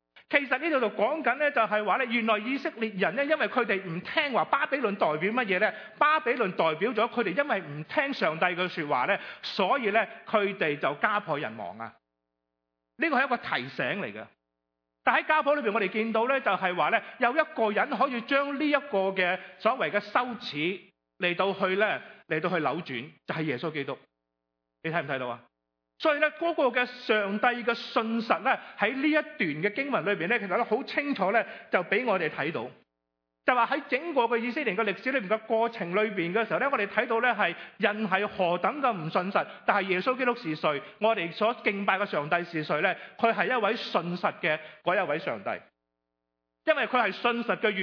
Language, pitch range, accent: English, 155-230 Hz, Chinese